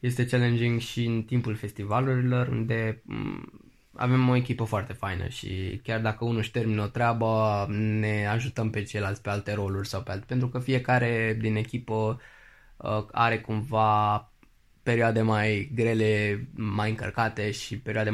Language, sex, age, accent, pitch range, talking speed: Romanian, male, 20-39, native, 110-130 Hz, 145 wpm